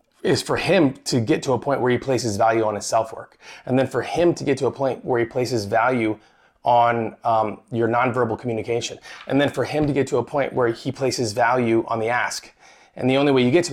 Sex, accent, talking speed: male, American, 250 wpm